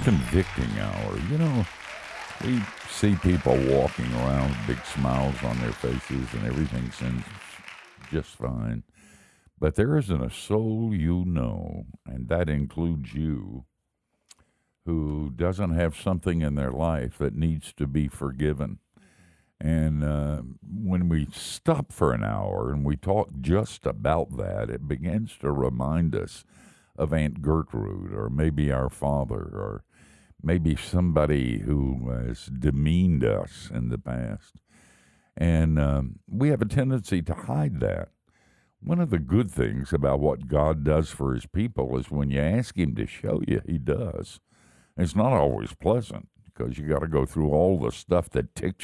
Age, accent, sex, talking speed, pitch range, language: 60-79, American, male, 155 wpm, 70-90 Hz, English